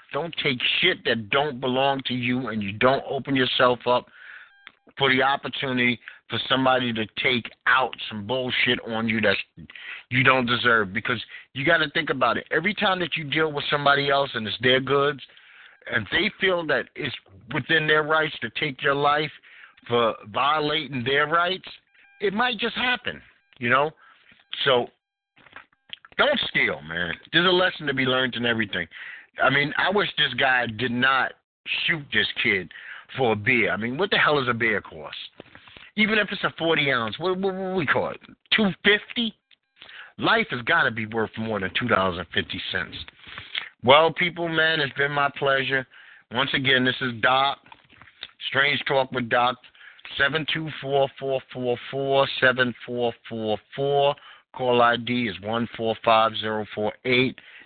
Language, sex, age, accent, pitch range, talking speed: English, male, 50-69, American, 120-150 Hz, 155 wpm